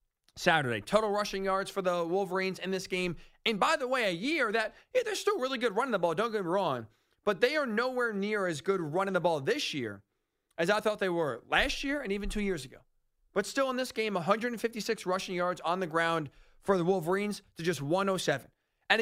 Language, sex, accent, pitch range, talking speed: English, male, American, 180-235 Hz, 220 wpm